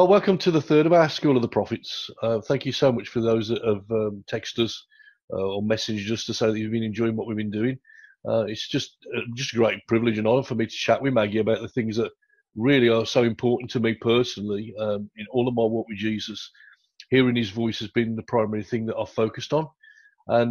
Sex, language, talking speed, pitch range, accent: male, English, 245 wpm, 110-130 Hz, British